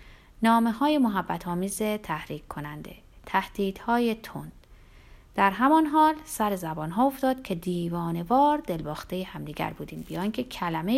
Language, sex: Persian, female